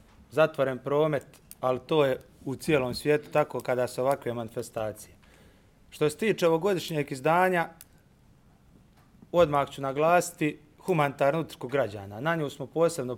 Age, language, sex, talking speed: 30-49, Croatian, male, 130 wpm